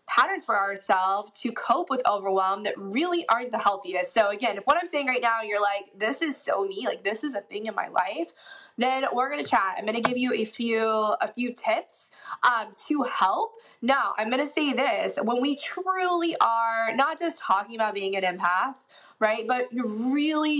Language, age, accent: English, 20-39, American